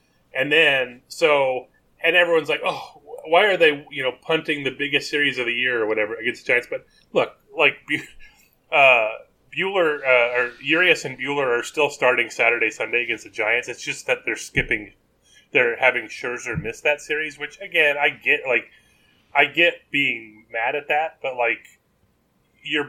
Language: English